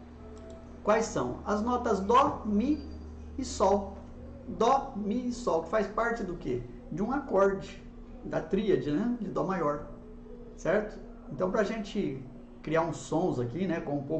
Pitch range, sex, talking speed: 145-235 Hz, male, 155 wpm